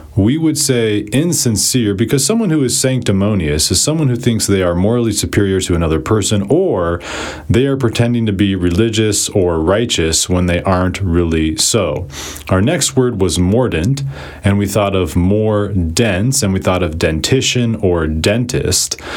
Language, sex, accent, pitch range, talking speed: English, male, American, 85-120 Hz, 165 wpm